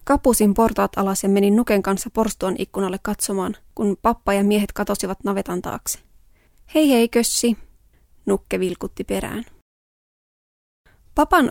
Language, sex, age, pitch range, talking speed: Finnish, female, 20-39, 200-230 Hz, 125 wpm